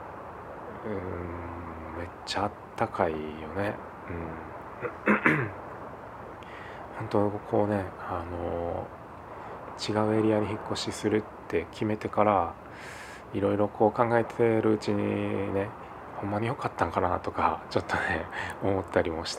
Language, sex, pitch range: Japanese, male, 90-120 Hz